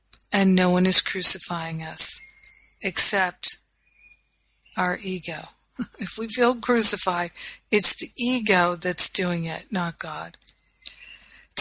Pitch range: 185-225 Hz